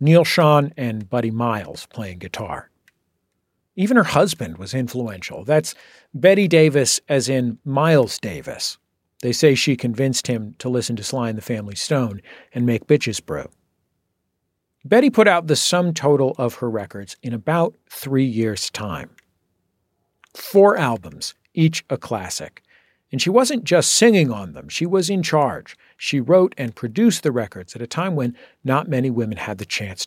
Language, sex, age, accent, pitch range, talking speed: English, male, 50-69, American, 110-155 Hz, 165 wpm